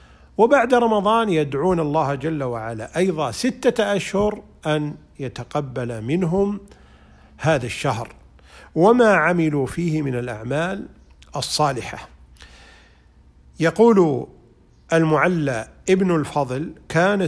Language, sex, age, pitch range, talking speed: Arabic, male, 50-69, 120-185 Hz, 85 wpm